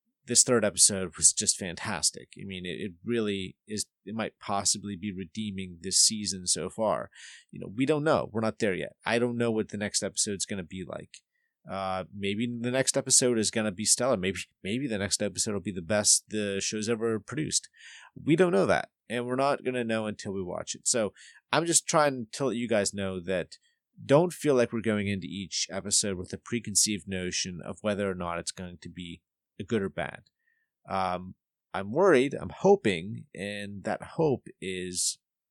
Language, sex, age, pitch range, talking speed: English, male, 30-49, 95-120 Hz, 205 wpm